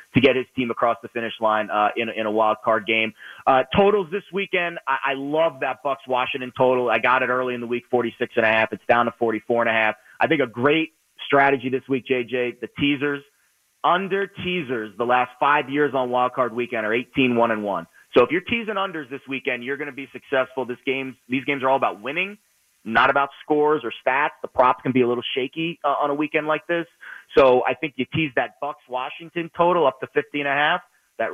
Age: 30-49